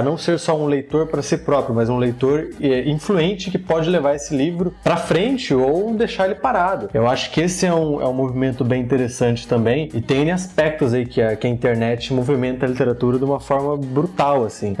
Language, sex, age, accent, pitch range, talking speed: Portuguese, male, 20-39, Brazilian, 120-145 Hz, 205 wpm